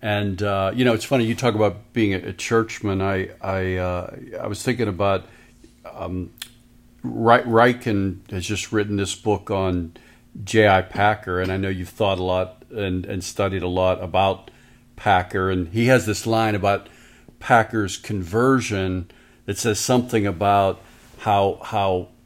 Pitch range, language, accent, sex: 100-125 Hz, English, American, male